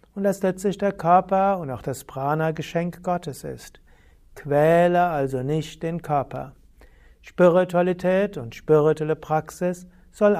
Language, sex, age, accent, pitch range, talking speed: German, male, 60-79, German, 140-180 Hz, 125 wpm